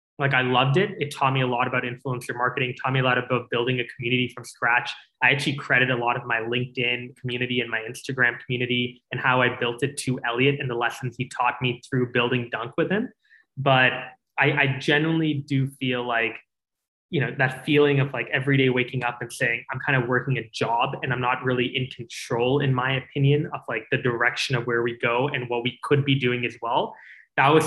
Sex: male